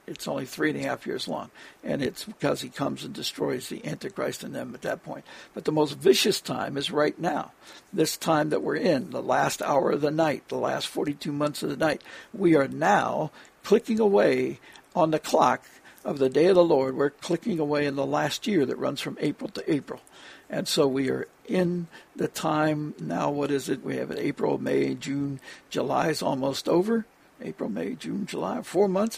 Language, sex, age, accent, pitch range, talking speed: English, male, 60-79, American, 145-185 Hz, 210 wpm